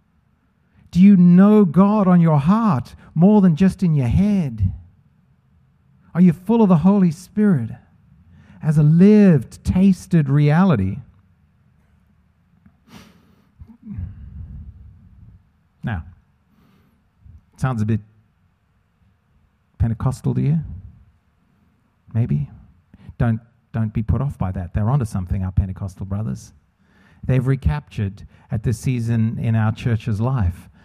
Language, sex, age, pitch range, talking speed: English, male, 50-69, 95-150 Hz, 105 wpm